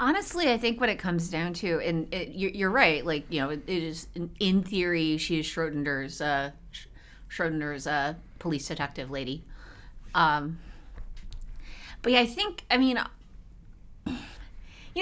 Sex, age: female, 30-49